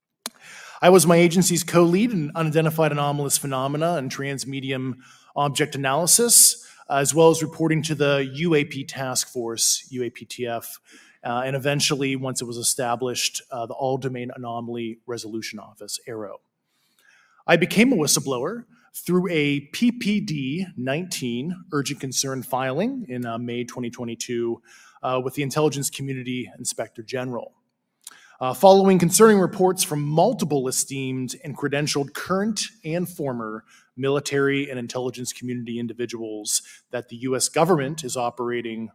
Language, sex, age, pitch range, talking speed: English, male, 20-39, 125-165 Hz, 130 wpm